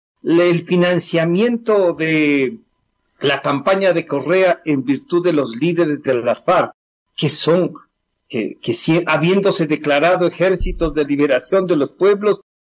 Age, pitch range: 50-69, 150-200 Hz